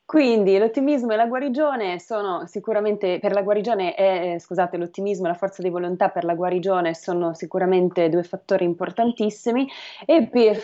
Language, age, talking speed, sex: Italian, 20-39, 95 wpm, female